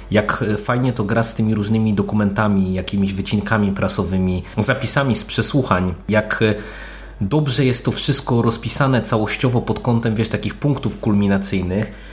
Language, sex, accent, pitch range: Polish, male, native, 100-120 Hz